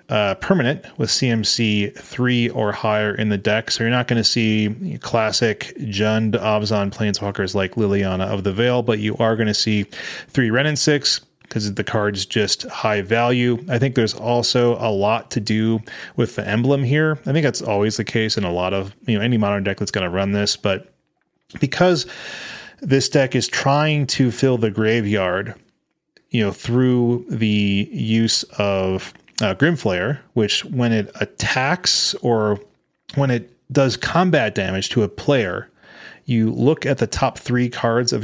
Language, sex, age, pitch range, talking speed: English, male, 30-49, 105-130 Hz, 175 wpm